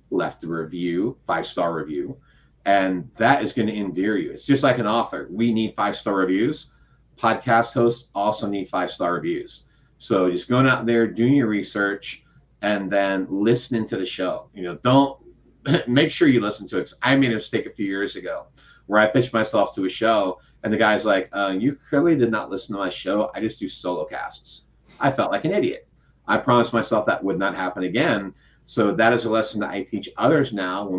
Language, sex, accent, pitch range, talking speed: English, male, American, 95-120 Hz, 205 wpm